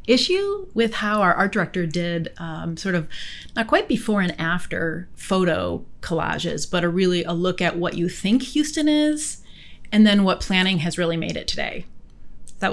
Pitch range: 170-205 Hz